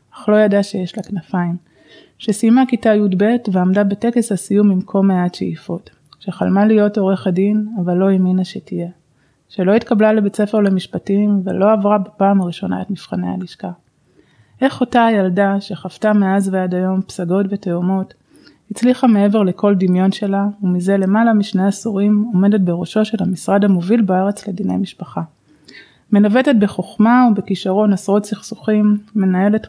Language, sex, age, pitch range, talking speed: Hebrew, female, 20-39, 180-210 Hz, 140 wpm